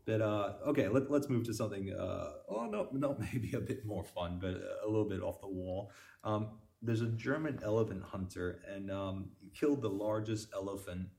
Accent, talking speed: American, 195 wpm